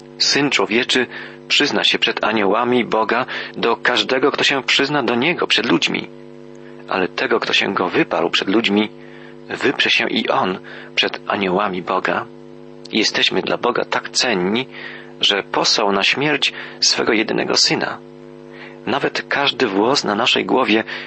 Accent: native